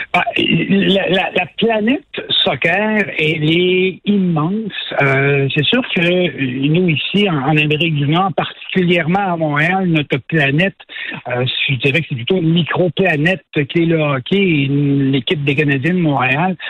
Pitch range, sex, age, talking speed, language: 145-190 Hz, male, 60-79, 145 wpm, French